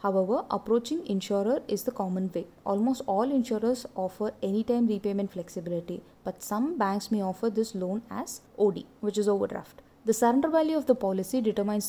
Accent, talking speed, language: Indian, 165 wpm, English